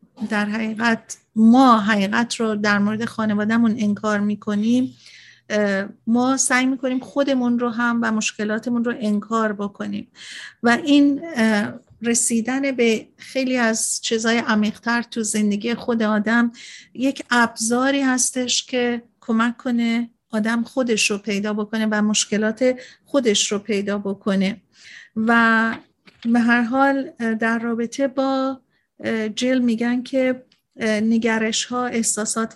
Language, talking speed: Persian, 115 wpm